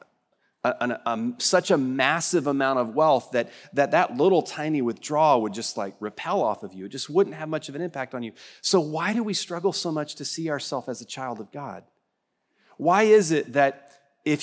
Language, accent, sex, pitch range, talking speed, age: English, American, male, 125-170 Hz, 215 wpm, 30-49